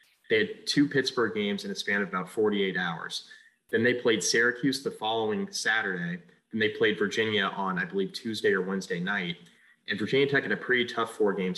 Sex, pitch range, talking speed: male, 95-140 Hz, 200 wpm